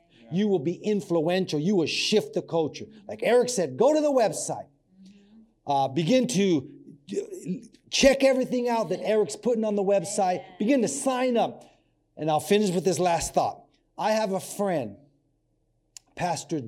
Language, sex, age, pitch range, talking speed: English, male, 40-59, 150-205 Hz, 160 wpm